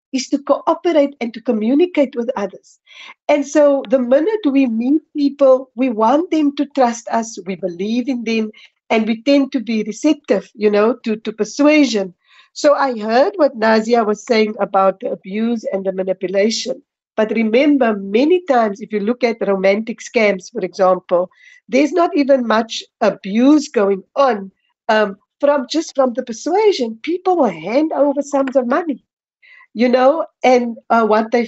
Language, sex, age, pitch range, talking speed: English, female, 50-69, 200-275 Hz, 165 wpm